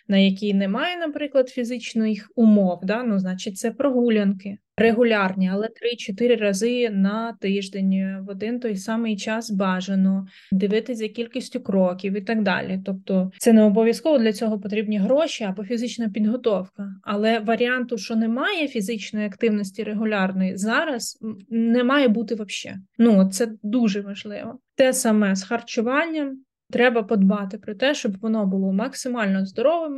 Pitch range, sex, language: 200-240 Hz, female, Ukrainian